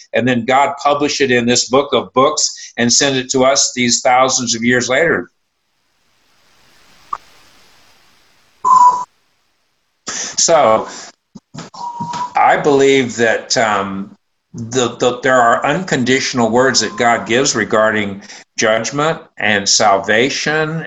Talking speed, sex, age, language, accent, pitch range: 110 wpm, male, 60-79, English, American, 120-145 Hz